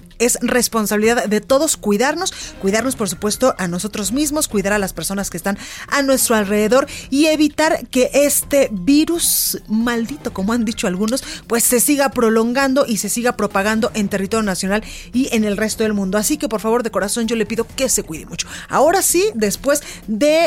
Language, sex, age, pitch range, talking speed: Spanish, female, 30-49, 205-270 Hz, 190 wpm